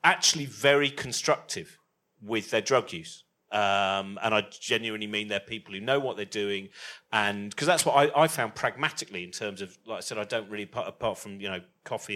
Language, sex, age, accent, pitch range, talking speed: English, male, 40-59, British, 105-150 Hz, 205 wpm